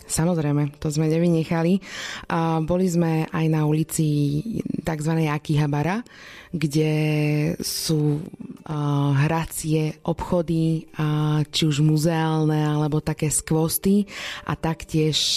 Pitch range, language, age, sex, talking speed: 150-170 Hz, Slovak, 20-39, female, 90 wpm